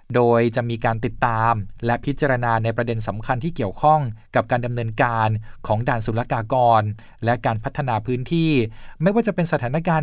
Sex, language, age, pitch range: male, Thai, 20-39, 110-140 Hz